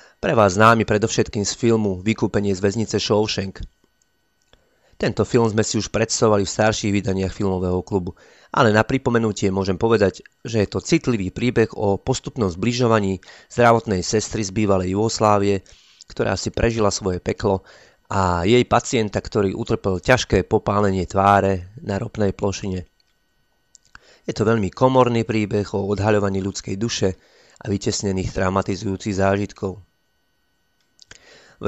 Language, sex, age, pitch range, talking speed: Slovak, male, 30-49, 95-110 Hz, 130 wpm